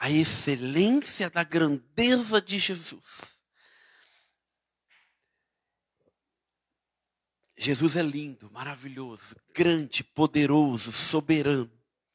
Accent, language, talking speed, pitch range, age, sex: Brazilian, Portuguese, 65 wpm, 140-200 Hz, 50-69, male